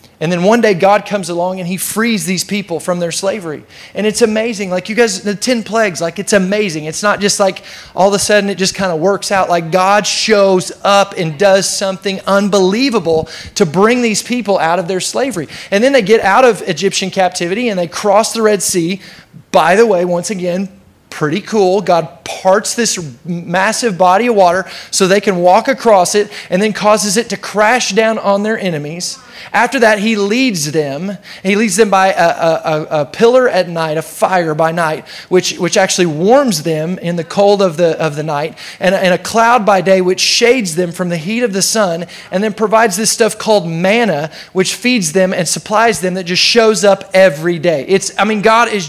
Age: 30-49